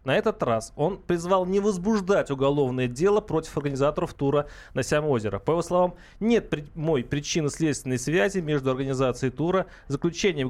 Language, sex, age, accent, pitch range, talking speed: Russian, male, 30-49, native, 130-170 Hz, 155 wpm